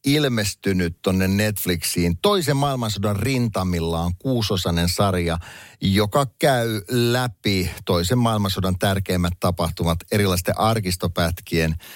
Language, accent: Finnish, native